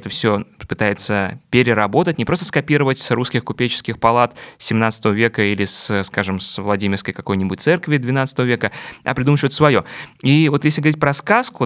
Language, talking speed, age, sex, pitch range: Russian, 160 wpm, 20-39, male, 105-135 Hz